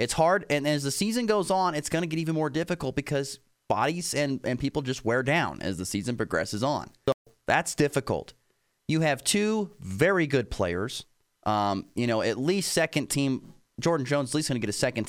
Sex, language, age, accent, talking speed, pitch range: male, English, 30-49, American, 215 wpm, 110-150 Hz